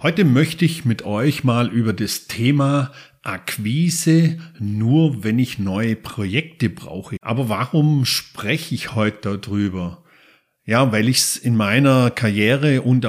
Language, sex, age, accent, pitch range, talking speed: German, male, 50-69, German, 110-150 Hz, 140 wpm